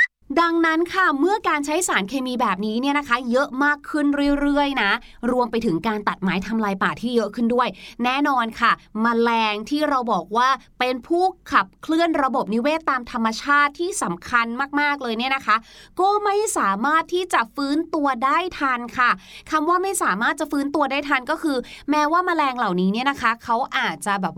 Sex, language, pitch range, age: female, Thai, 225-300 Hz, 20-39